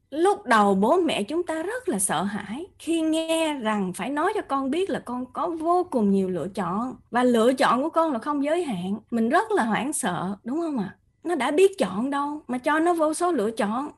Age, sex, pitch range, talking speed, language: 20-39, female, 205-310 Hz, 235 wpm, Vietnamese